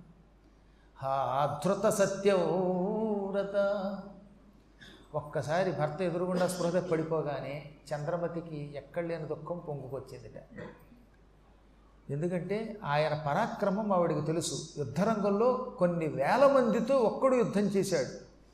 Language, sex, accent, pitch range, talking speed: Telugu, male, native, 160-205 Hz, 80 wpm